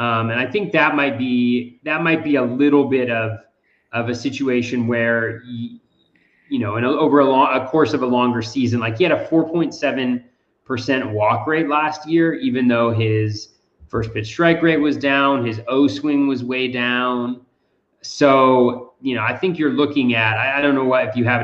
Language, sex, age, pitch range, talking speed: English, male, 30-49, 115-145 Hz, 200 wpm